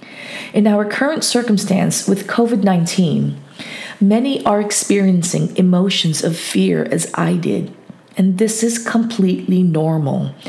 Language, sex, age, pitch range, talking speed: English, female, 40-59, 180-225 Hz, 115 wpm